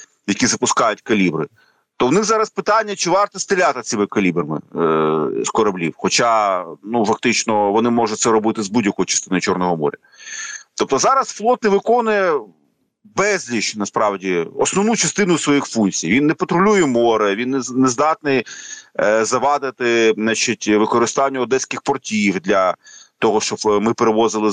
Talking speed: 140 wpm